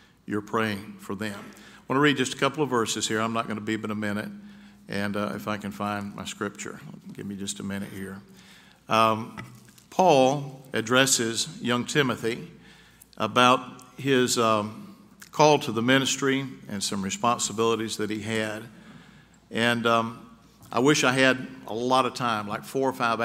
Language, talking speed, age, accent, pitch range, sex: English, 175 wpm, 50-69, American, 110-130 Hz, male